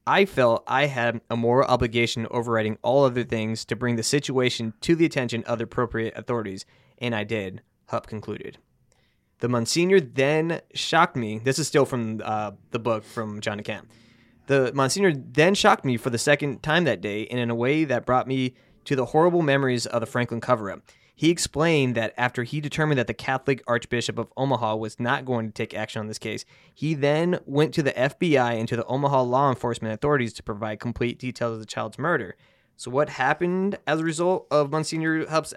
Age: 20-39